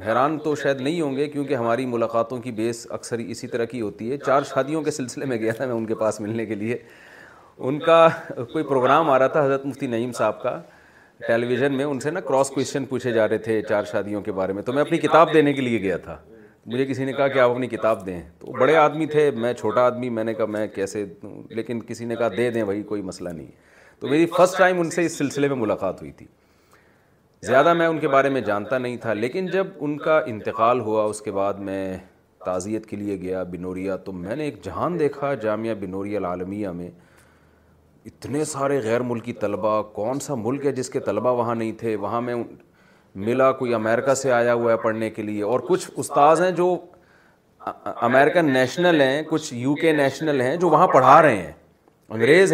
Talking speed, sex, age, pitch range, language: 220 wpm, male, 40-59, 110-145 Hz, Urdu